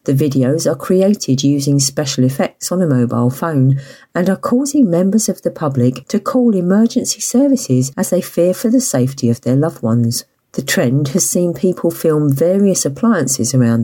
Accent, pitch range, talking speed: British, 130-195 Hz, 180 wpm